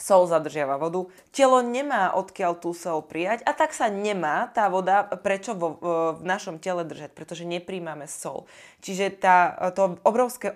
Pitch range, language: 160-195 Hz, Slovak